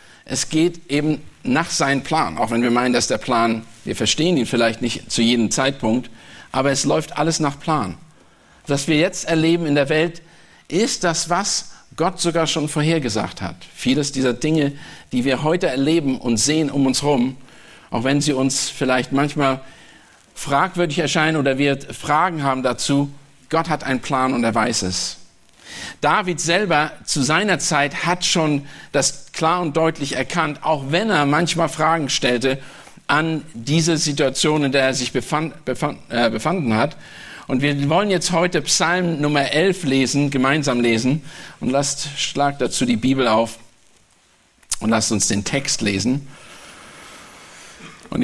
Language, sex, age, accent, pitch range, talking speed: German, male, 50-69, German, 130-160 Hz, 160 wpm